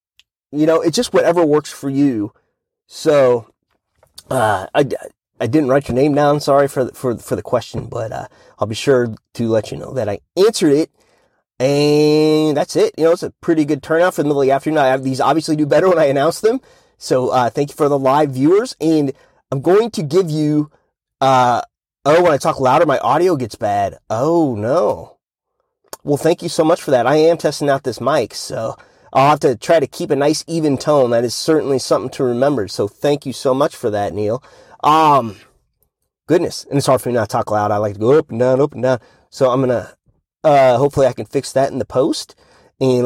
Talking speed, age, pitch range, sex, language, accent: 225 wpm, 30-49, 120-150 Hz, male, English, American